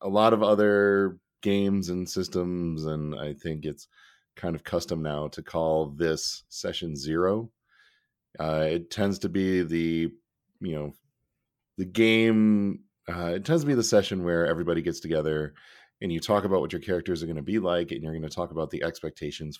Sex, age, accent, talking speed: male, 40-59, American, 185 wpm